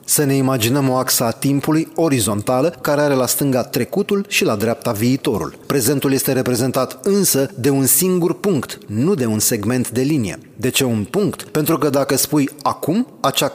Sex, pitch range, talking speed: male, 125-160 Hz, 180 wpm